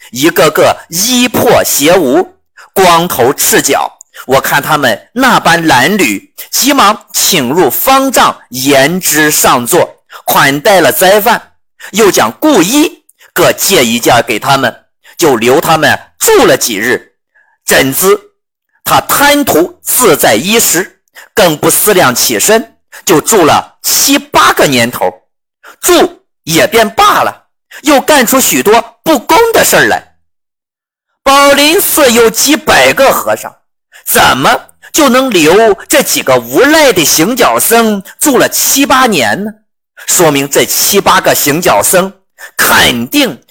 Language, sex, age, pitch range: Chinese, male, 50-69, 215-305 Hz